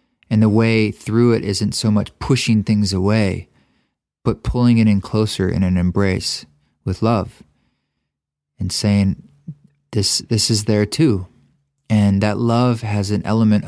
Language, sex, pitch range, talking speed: English, male, 100-115 Hz, 150 wpm